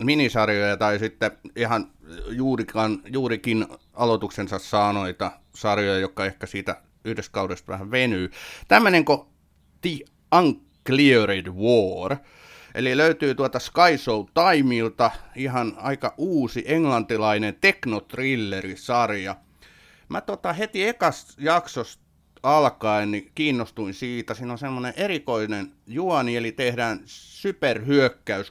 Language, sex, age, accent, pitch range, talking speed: Finnish, male, 30-49, native, 100-130 Hz, 105 wpm